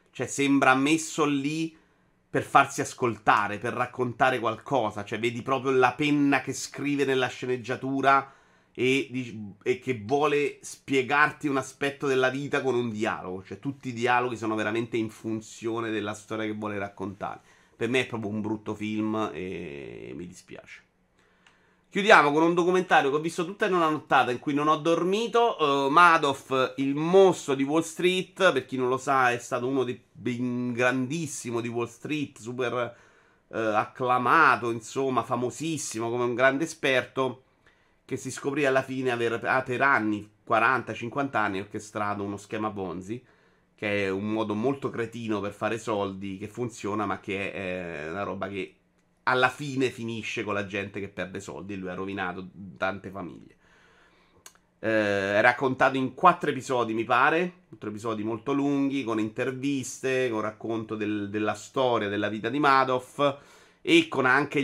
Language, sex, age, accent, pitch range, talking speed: Italian, male, 30-49, native, 105-140 Hz, 160 wpm